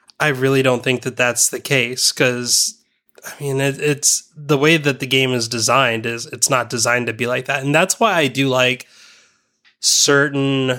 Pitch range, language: 120-145 Hz, English